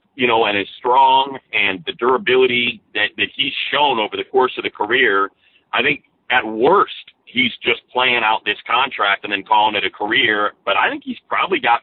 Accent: American